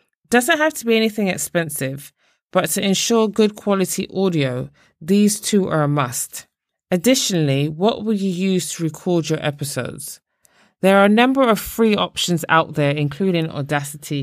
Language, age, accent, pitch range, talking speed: English, 20-39, British, 150-200 Hz, 160 wpm